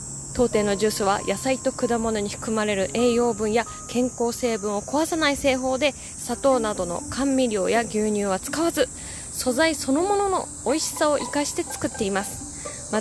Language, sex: Japanese, female